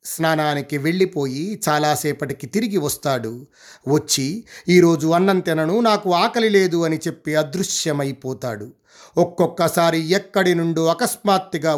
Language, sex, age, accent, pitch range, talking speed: Telugu, male, 30-49, native, 140-170 Hz, 95 wpm